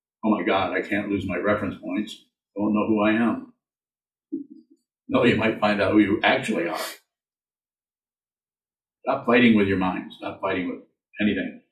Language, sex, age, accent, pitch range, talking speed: English, male, 50-69, American, 95-110 Hz, 170 wpm